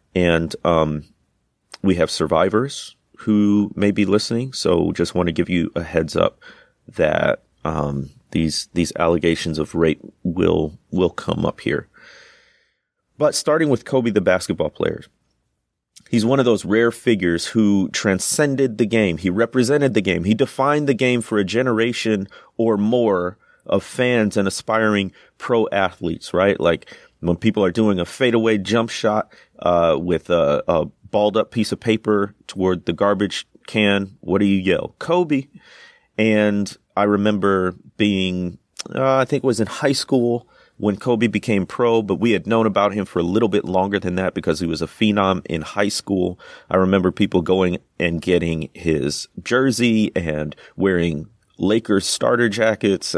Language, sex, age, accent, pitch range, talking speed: English, male, 30-49, American, 90-110 Hz, 160 wpm